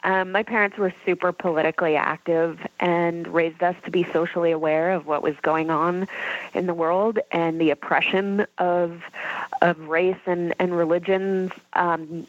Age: 20-39